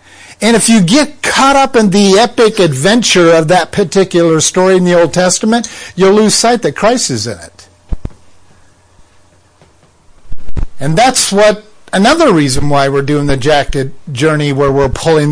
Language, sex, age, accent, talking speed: English, male, 50-69, American, 155 wpm